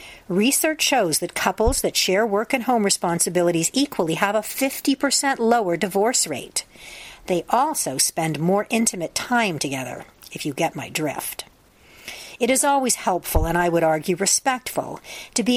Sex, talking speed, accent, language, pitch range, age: female, 155 wpm, American, English, 170-235 Hz, 50-69